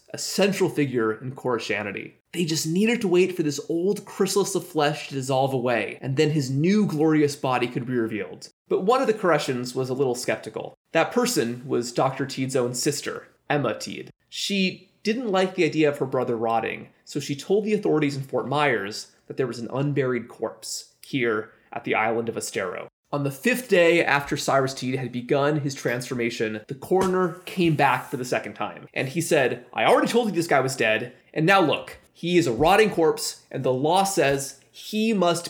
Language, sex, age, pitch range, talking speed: English, male, 20-39, 140-205 Hz, 200 wpm